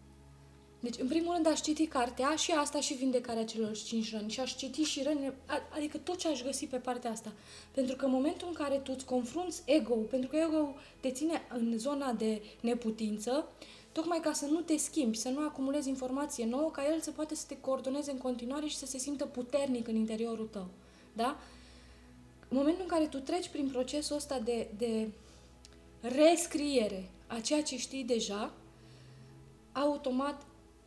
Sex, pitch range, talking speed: female, 225-295 Hz, 180 wpm